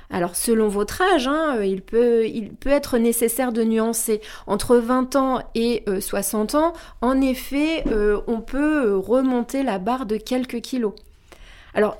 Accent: French